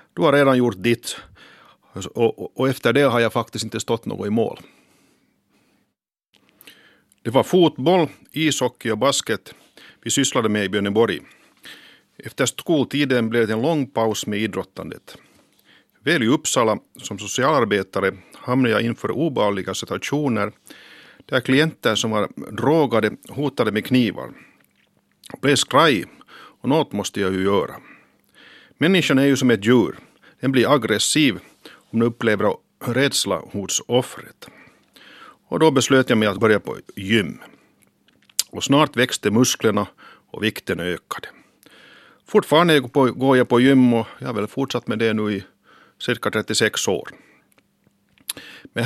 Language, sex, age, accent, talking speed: Swedish, male, 50-69, Finnish, 140 wpm